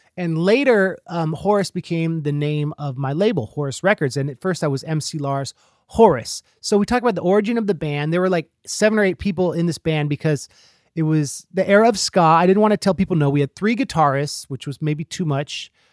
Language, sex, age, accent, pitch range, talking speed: English, male, 30-49, American, 150-195 Hz, 235 wpm